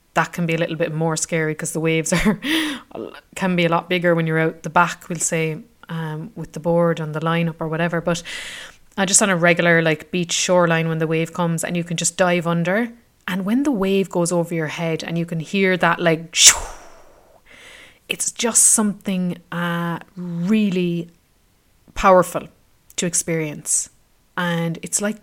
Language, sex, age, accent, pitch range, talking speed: English, female, 30-49, Irish, 160-180 Hz, 185 wpm